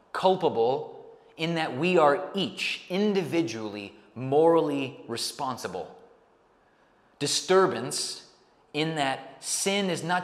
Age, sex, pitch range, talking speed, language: 30-49, male, 135-185 Hz, 90 wpm, English